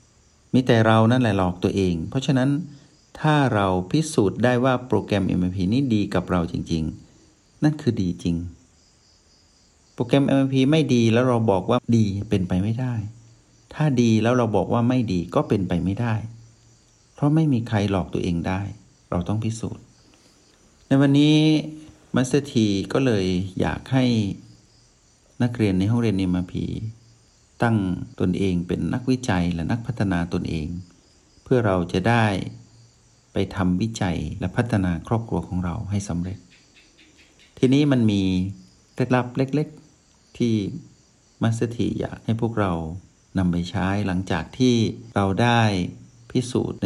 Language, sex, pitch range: Thai, male, 90-120 Hz